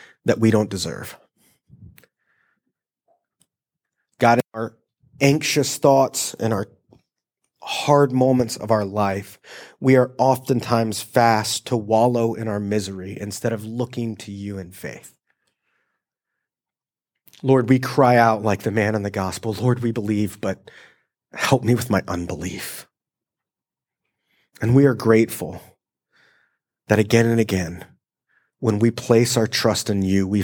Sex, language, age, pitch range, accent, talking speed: male, English, 30-49, 100-115 Hz, American, 130 wpm